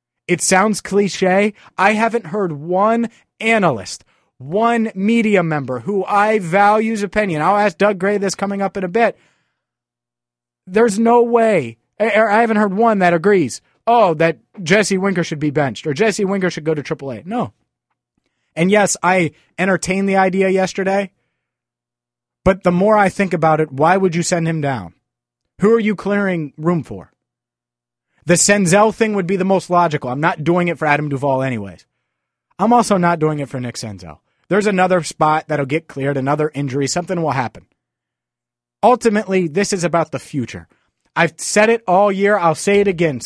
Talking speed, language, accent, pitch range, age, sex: 175 wpm, English, American, 145-205 Hz, 30-49, male